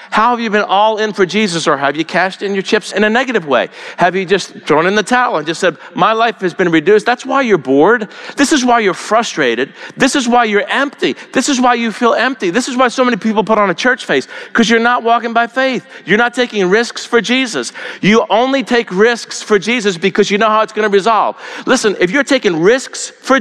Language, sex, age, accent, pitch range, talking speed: English, male, 50-69, American, 210-290 Hz, 250 wpm